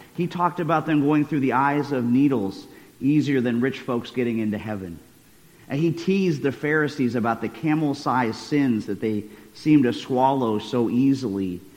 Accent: American